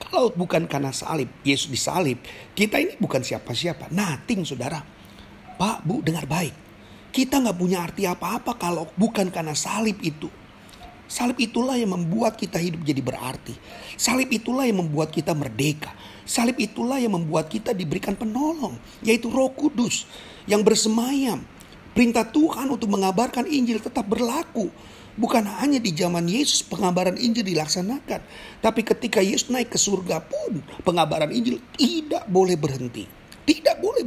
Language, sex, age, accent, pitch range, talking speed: Indonesian, male, 40-59, native, 145-230 Hz, 145 wpm